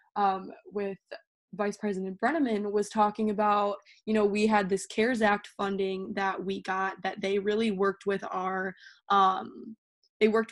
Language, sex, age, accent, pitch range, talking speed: English, female, 20-39, American, 195-220 Hz, 160 wpm